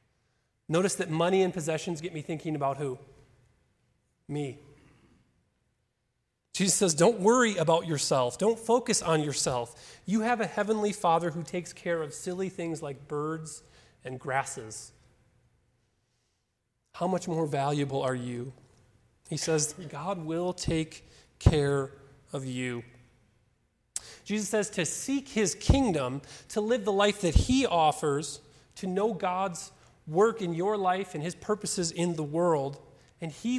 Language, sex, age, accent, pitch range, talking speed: English, male, 30-49, American, 130-175 Hz, 140 wpm